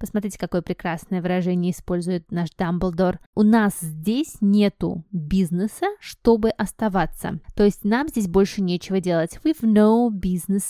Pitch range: 180-230 Hz